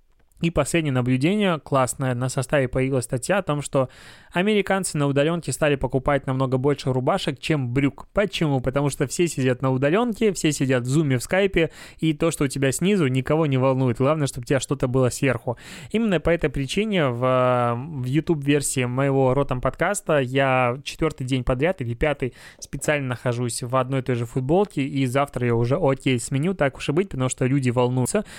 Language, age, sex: Russian, 20-39, male